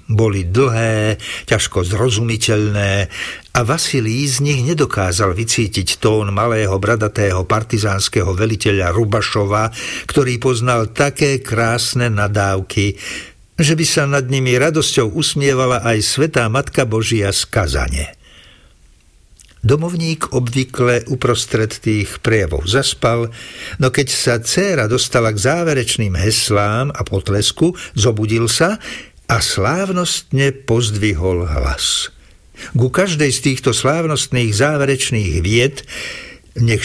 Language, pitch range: Slovak, 100-130 Hz